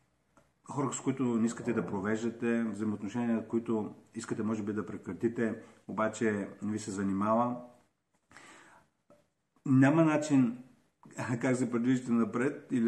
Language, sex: Bulgarian, male